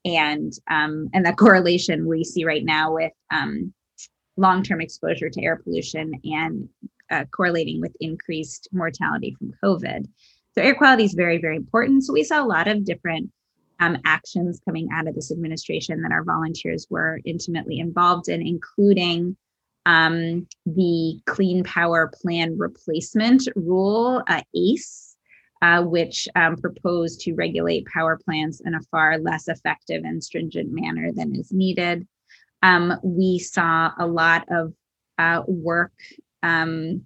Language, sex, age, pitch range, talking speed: English, female, 20-39, 160-185 Hz, 145 wpm